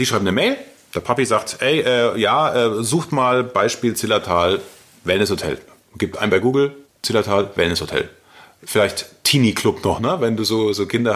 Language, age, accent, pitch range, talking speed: German, 30-49, German, 110-150 Hz, 185 wpm